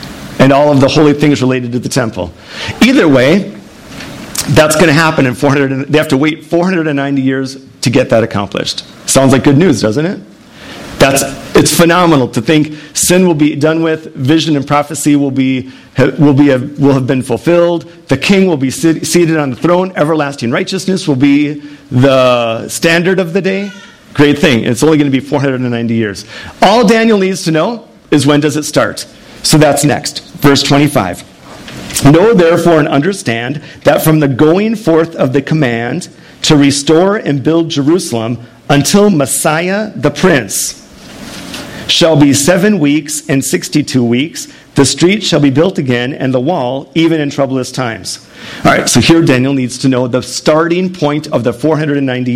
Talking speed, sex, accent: 175 wpm, male, American